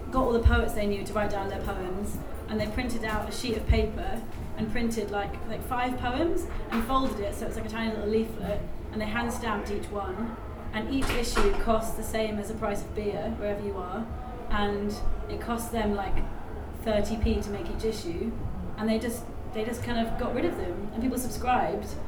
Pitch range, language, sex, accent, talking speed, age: 215-250 Hz, English, female, British, 215 wpm, 30-49